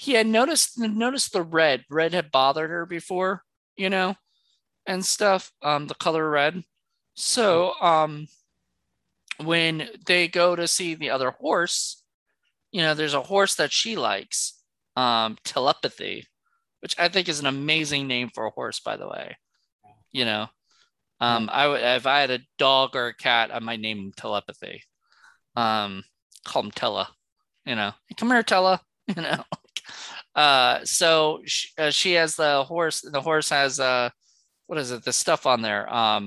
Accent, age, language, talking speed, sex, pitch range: American, 20-39, English, 170 wpm, male, 125-175 Hz